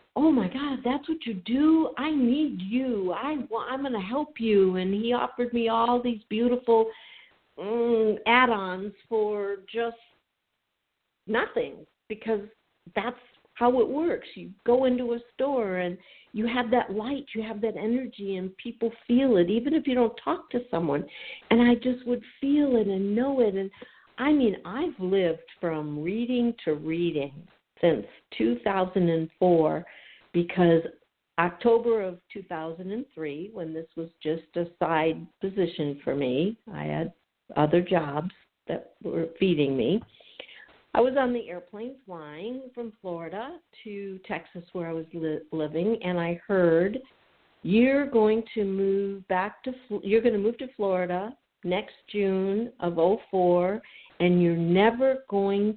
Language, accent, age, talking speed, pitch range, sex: English, American, 60-79, 145 wpm, 175-240 Hz, female